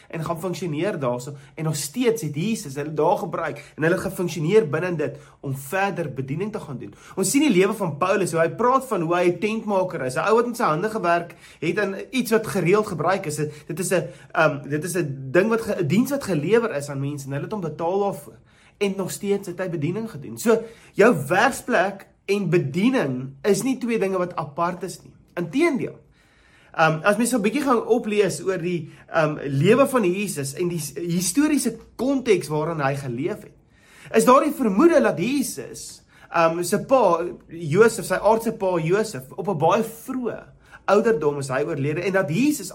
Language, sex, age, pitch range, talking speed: English, male, 30-49, 155-220 Hz, 200 wpm